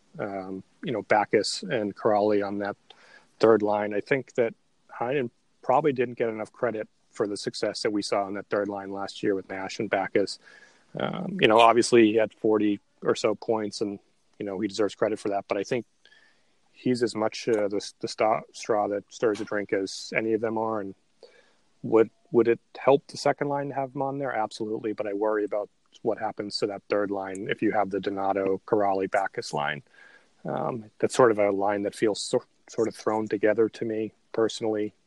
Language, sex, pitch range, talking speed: English, male, 100-110 Hz, 205 wpm